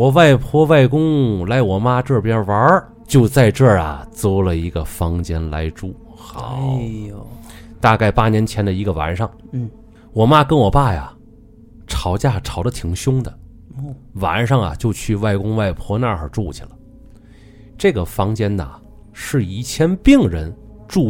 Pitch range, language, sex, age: 85-130 Hz, Chinese, male, 30-49